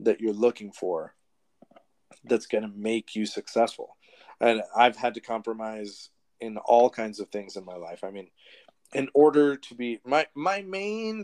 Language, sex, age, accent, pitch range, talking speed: English, male, 30-49, American, 110-145 Hz, 165 wpm